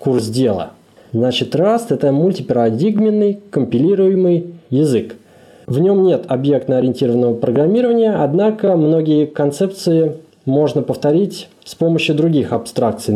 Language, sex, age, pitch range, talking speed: Russian, male, 20-39, 125-175 Hz, 100 wpm